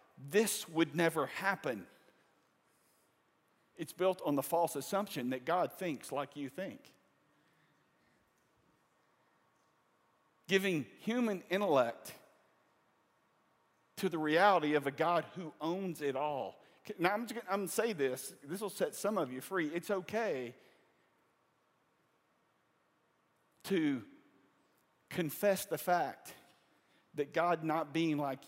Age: 50-69